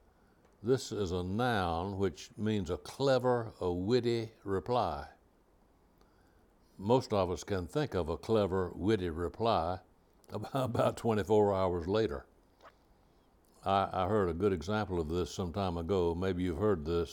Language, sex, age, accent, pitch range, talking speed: English, male, 60-79, American, 90-120 Hz, 140 wpm